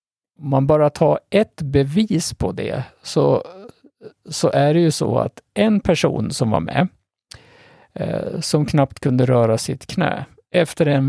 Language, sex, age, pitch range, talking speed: Swedish, male, 50-69, 135-165 Hz, 150 wpm